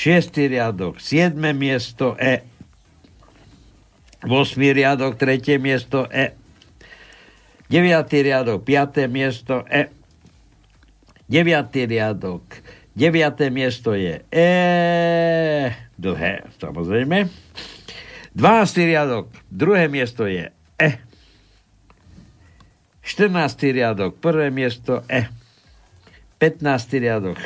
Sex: male